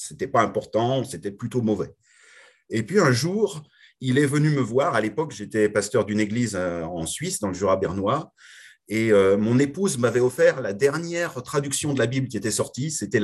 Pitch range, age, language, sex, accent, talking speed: 110-150 Hz, 30-49, French, male, French, 185 wpm